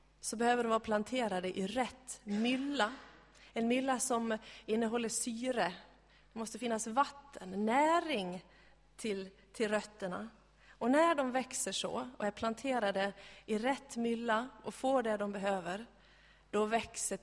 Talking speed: 135 wpm